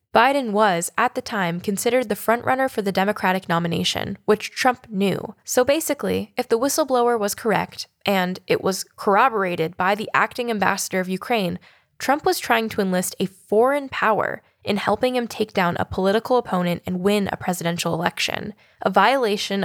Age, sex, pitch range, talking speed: 10-29, female, 185-230 Hz, 170 wpm